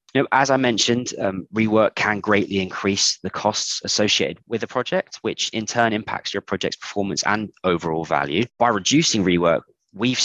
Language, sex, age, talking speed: English, male, 20-39, 170 wpm